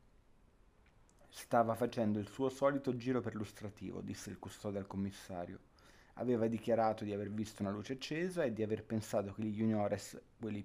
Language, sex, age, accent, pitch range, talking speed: Italian, male, 30-49, native, 105-125 Hz, 165 wpm